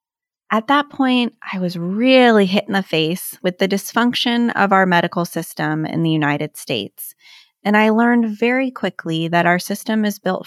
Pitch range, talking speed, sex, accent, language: 175-235 Hz, 180 wpm, female, American, English